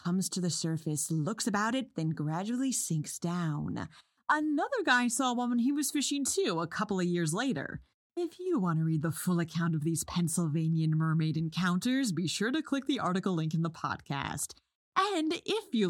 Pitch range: 160-245 Hz